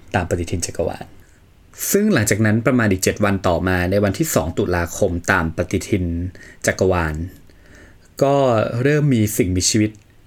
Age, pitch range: 20-39, 95-120 Hz